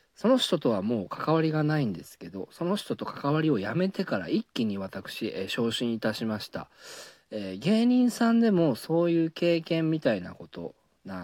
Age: 40-59